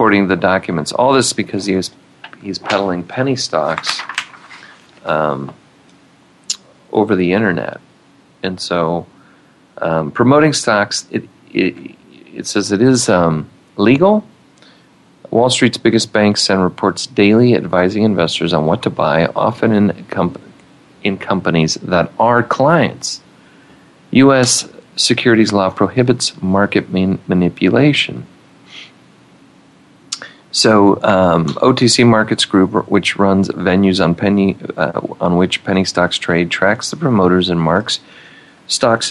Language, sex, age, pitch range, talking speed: English, male, 40-59, 85-115 Hz, 120 wpm